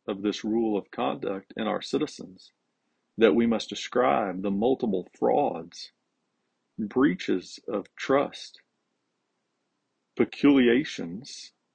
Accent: American